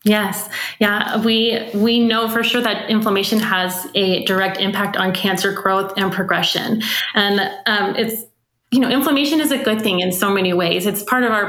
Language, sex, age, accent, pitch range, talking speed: English, female, 20-39, American, 190-220 Hz, 190 wpm